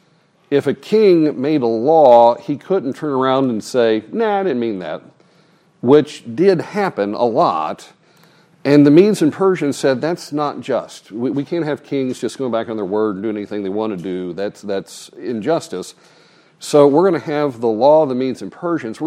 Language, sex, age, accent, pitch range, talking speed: English, male, 50-69, American, 115-175 Hz, 205 wpm